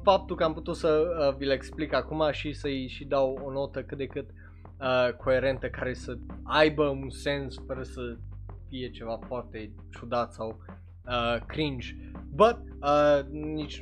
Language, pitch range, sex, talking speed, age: Romanian, 125-170 Hz, male, 140 wpm, 20-39